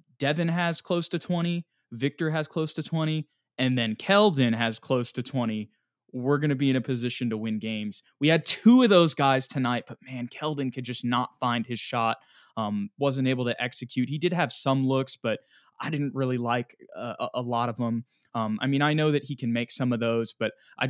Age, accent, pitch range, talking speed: 20-39, American, 115-145 Hz, 220 wpm